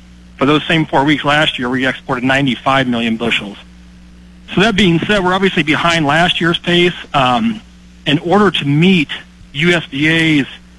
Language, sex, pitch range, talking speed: English, male, 125-165 Hz, 155 wpm